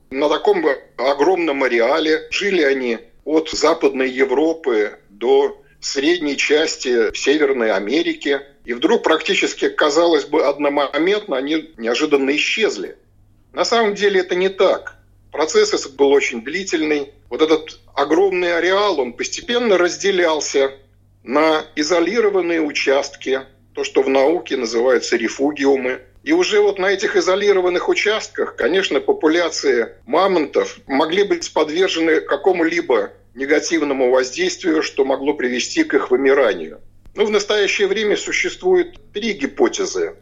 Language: Russian